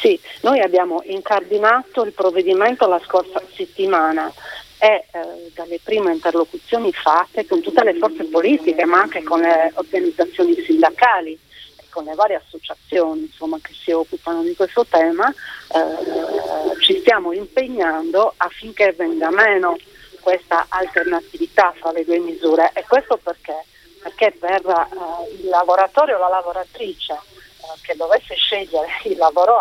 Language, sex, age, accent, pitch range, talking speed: Italian, female, 40-59, native, 165-230 Hz, 135 wpm